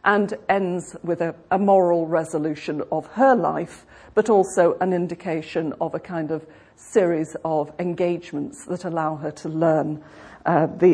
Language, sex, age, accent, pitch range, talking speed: English, female, 40-59, British, 170-240 Hz, 150 wpm